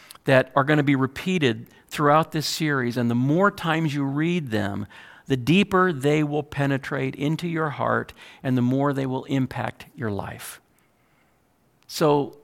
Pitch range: 125-155 Hz